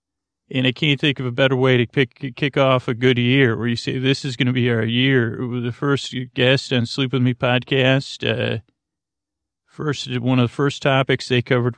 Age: 40-59